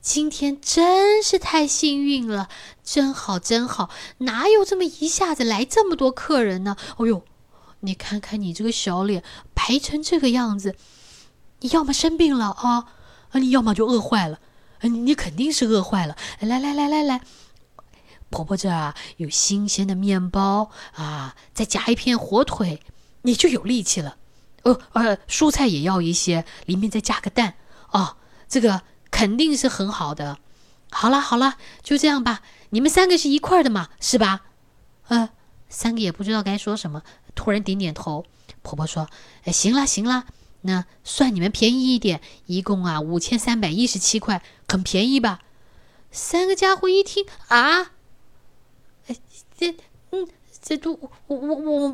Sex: female